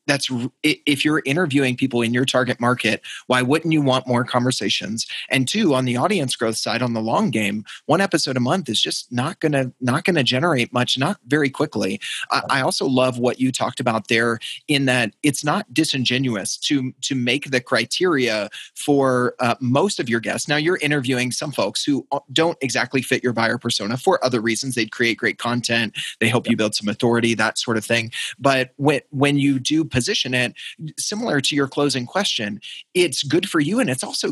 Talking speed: 200 wpm